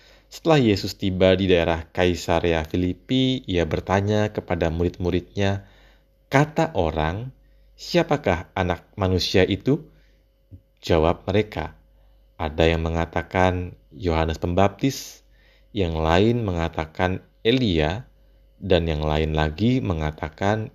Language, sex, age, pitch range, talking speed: Indonesian, male, 30-49, 80-110 Hz, 95 wpm